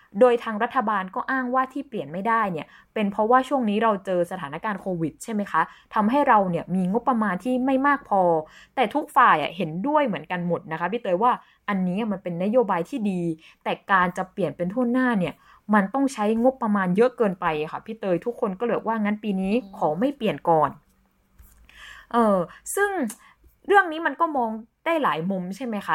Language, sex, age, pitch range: Thai, female, 20-39, 180-250 Hz